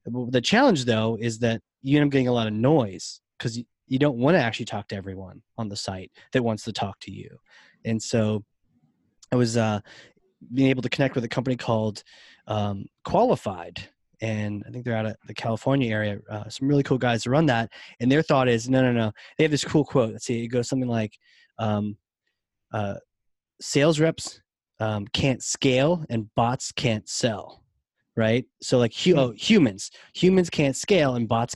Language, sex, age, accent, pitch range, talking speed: English, male, 20-39, American, 110-135 Hz, 195 wpm